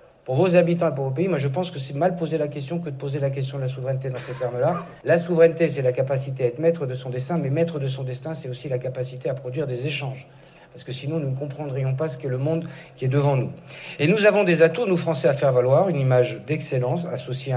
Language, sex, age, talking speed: French, male, 50-69, 275 wpm